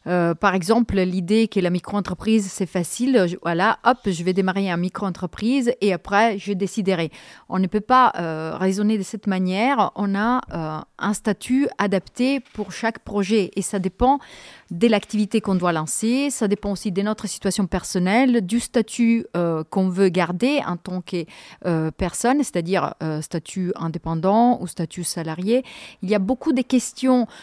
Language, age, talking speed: French, 30-49, 165 wpm